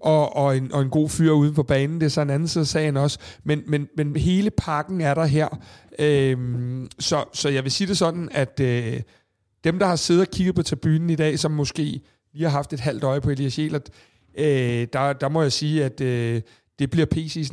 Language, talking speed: Danish, 235 wpm